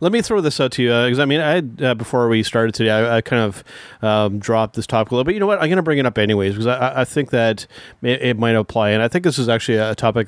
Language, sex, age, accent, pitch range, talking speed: English, male, 30-49, American, 115-130 Hz, 320 wpm